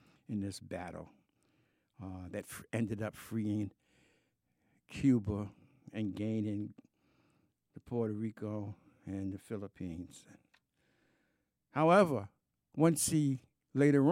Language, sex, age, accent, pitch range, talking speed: English, male, 60-79, American, 100-155 Hz, 90 wpm